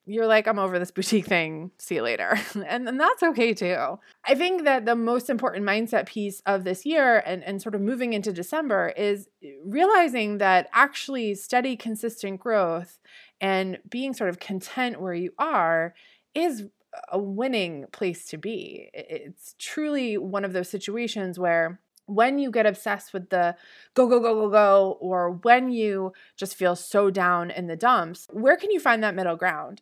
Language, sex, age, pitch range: English, female, 20-39, 185-250 Hz